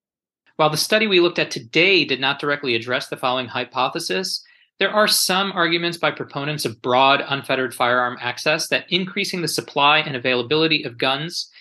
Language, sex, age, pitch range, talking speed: English, male, 30-49, 125-165 Hz, 170 wpm